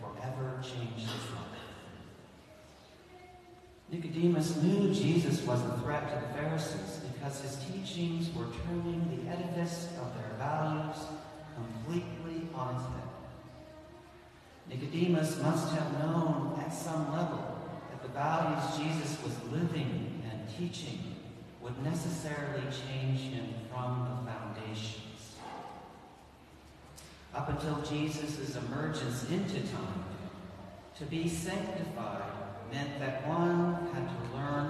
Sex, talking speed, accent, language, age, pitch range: male, 110 wpm, American, English, 40-59, 125-165 Hz